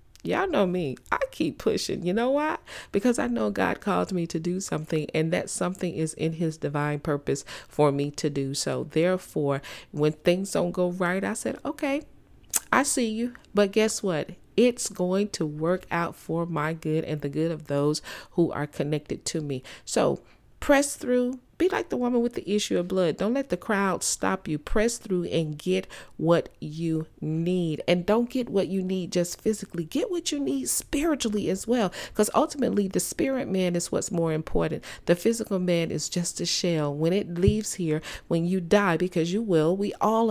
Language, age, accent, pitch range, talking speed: English, 40-59, American, 155-205 Hz, 195 wpm